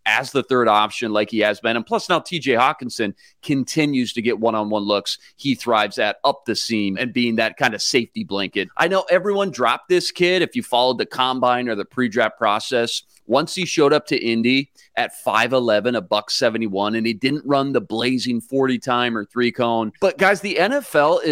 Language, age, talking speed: English, 30-49, 195 wpm